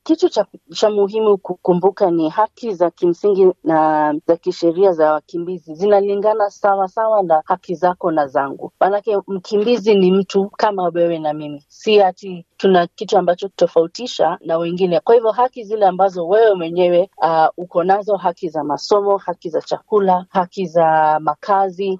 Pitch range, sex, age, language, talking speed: 165-200 Hz, female, 40-59, Swahili, 160 wpm